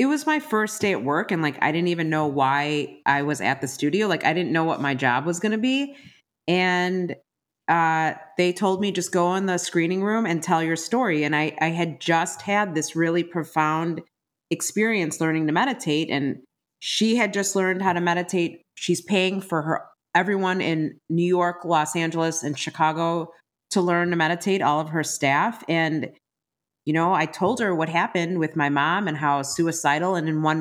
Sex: female